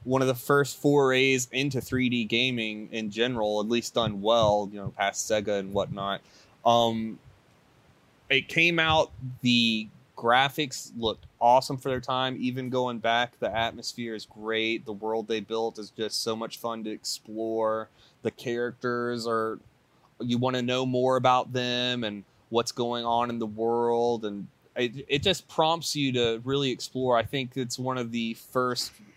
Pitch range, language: 110-130 Hz, English